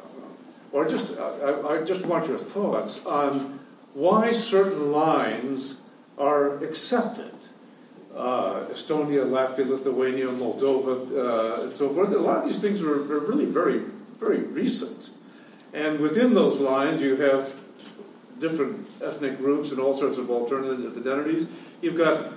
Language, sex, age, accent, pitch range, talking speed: English, male, 50-69, American, 130-165 Hz, 135 wpm